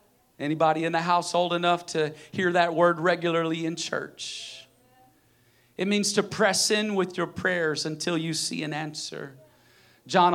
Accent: American